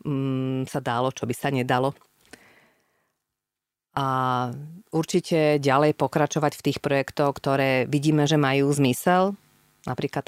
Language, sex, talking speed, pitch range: Slovak, female, 110 wpm, 135-150 Hz